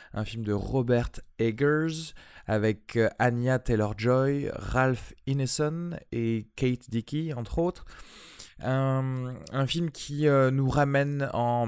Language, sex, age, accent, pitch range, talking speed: French, male, 20-39, French, 105-125 Hz, 120 wpm